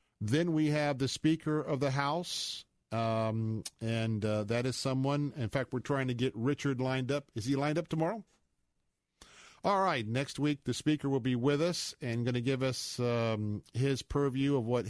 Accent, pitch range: American, 120-145 Hz